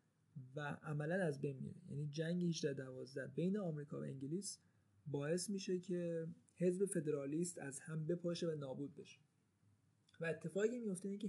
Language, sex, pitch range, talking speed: Persian, male, 140-170 Hz, 140 wpm